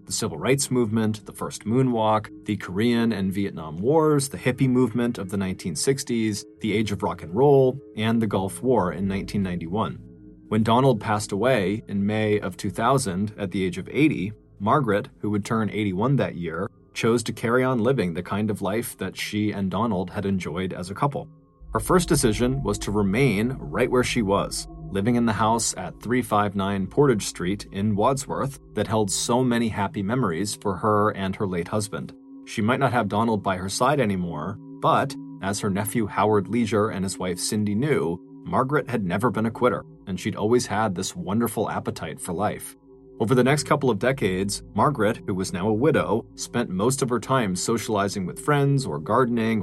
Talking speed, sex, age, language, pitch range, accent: 190 wpm, male, 30-49, English, 100-125 Hz, American